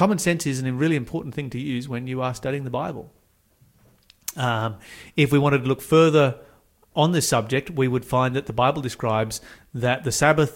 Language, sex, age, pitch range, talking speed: English, male, 30-49, 120-150 Hz, 200 wpm